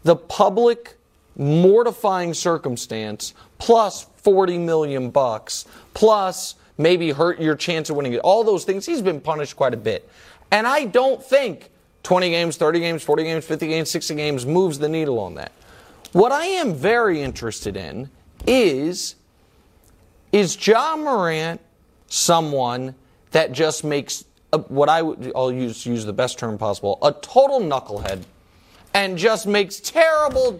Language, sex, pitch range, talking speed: English, male, 145-215 Hz, 150 wpm